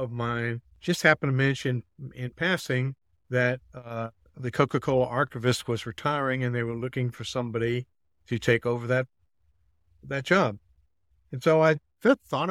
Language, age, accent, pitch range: English, 60-79, American, 120-140 Hz